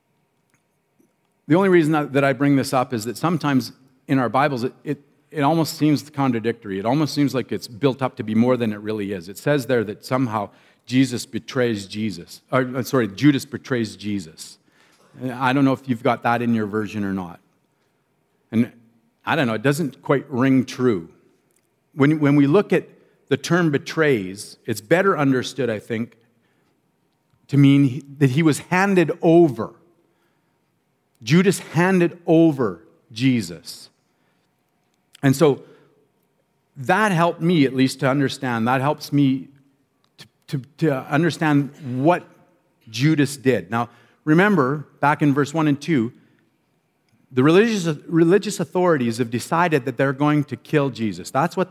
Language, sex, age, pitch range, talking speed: English, male, 50-69, 125-155 Hz, 155 wpm